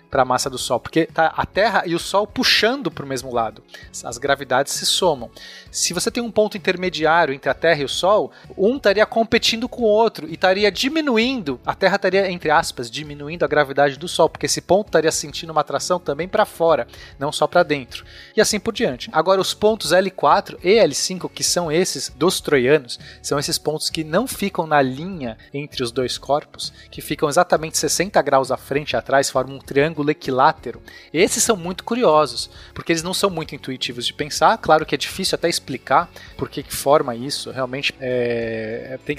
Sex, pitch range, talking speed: male, 140-195 Hz, 200 wpm